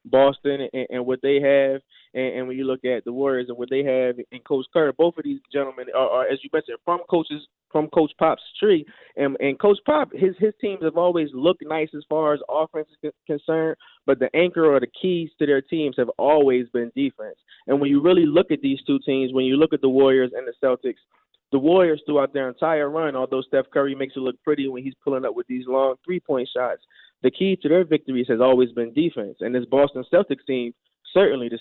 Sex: male